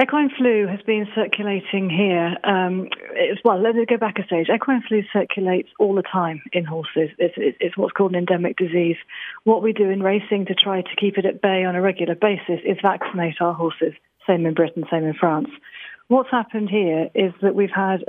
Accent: British